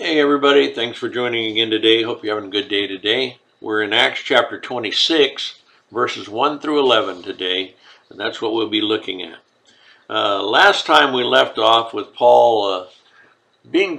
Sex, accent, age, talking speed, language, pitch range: male, American, 60-79, 175 wpm, English, 110-135 Hz